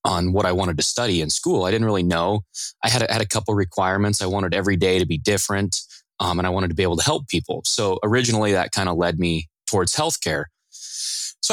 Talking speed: 240 wpm